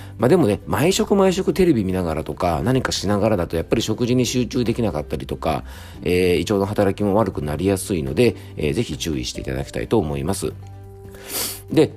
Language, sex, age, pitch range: Japanese, male, 40-59, 80-130 Hz